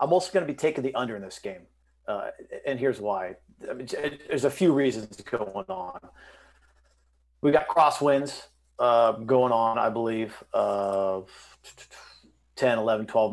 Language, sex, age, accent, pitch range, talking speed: English, male, 40-59, American, 100-155 Hz, 150 wpm